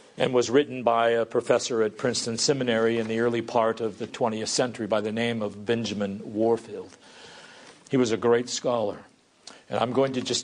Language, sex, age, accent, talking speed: English, male, 50-69, American, 190 wpm